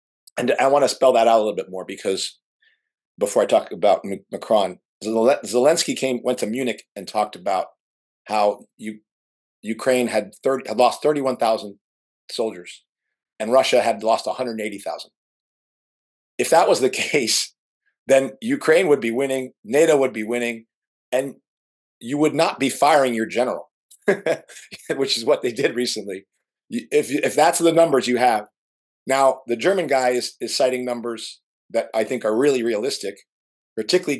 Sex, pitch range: male, 110-145 Hz